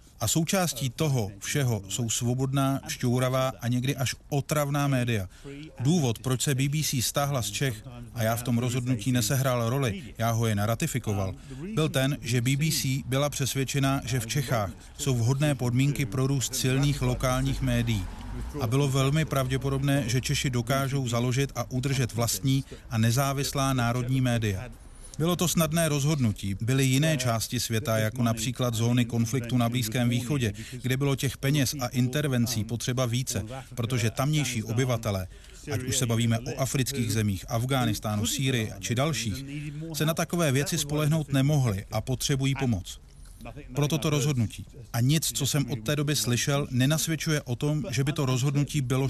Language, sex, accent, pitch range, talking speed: Czech, male, native, 120-140 Hz, 155 wpm